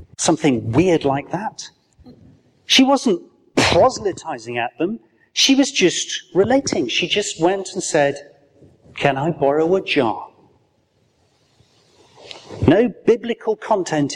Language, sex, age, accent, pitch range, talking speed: English, male, 40-59, British, 130-185 Hz, 110 wpm